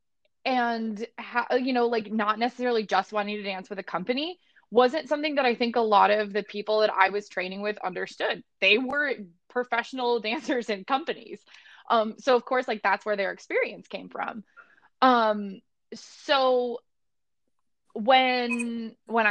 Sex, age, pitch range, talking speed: female, 20-39, 205-255 Hz, 155 wpm